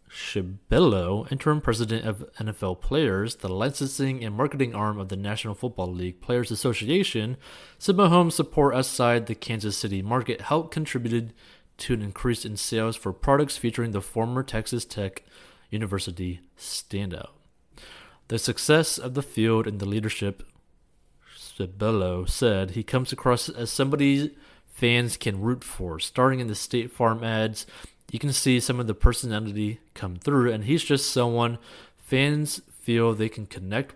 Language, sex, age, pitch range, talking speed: English, male, 30-49, 105-130 Hz, 150 wpm